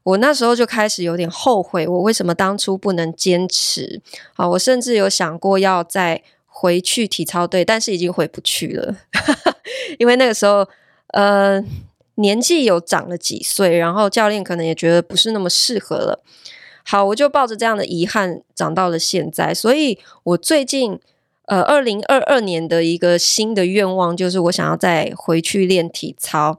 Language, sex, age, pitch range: Chinese, female, 20-39, 175-230 Hz